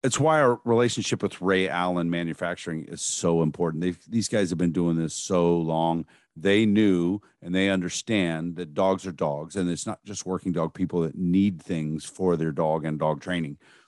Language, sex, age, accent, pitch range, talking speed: English, male, 50-69, American, 85-105 Hz, 190 wpm